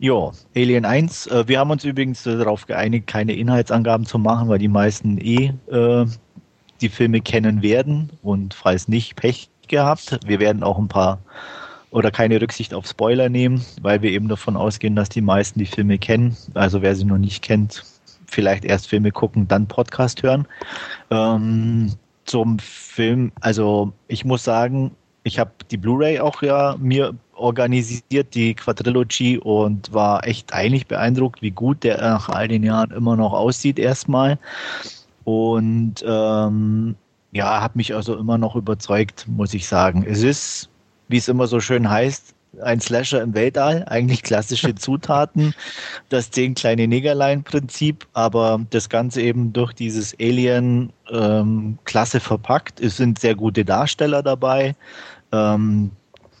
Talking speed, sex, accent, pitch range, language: 150 wpm, male, German, 105-125 Hz, German